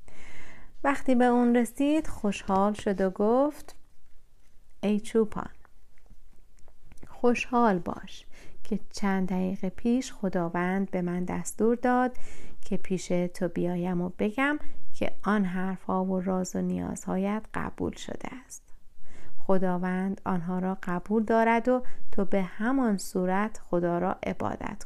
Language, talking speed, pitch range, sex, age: Persian, 120 wpm, 180-220 Hz, female, 30-49